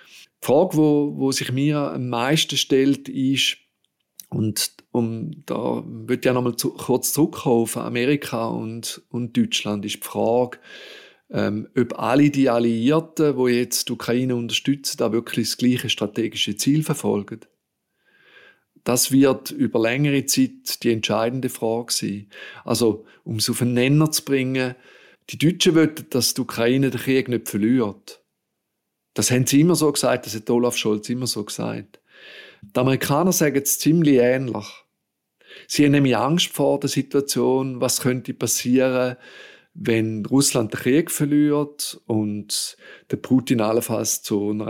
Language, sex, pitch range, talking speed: German, male, 115-145 Hz, 150 wpm